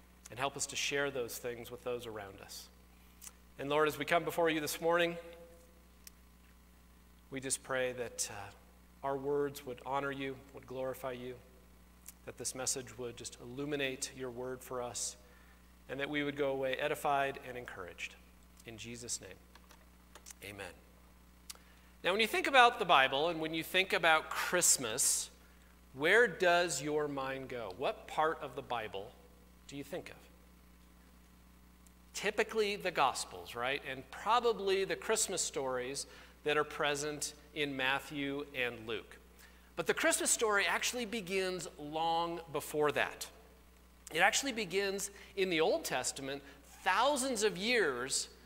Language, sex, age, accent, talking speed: English, male, 40-59, American, 145 wpm